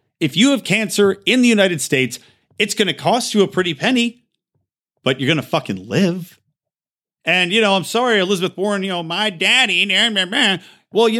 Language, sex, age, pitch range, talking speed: English, male, 40-59, 145-210 Hz, 190 wpm